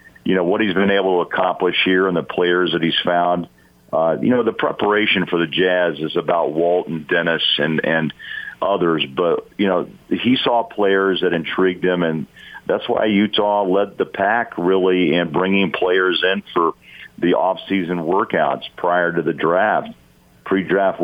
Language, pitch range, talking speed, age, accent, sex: English, 85-95 Hz, 175 wpm, 50-69, American, male